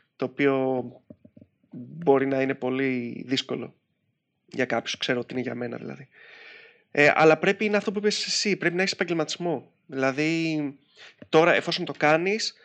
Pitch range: 135-170 Hz